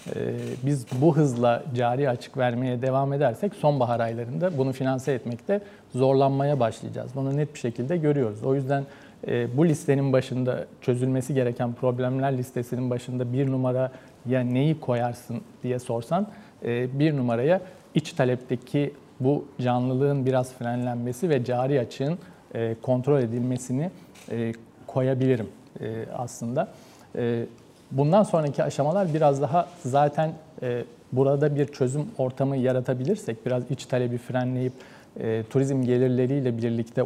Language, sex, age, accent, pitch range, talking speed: Turkish, male, 40-59, native, 125-145 Hz, 115 wpm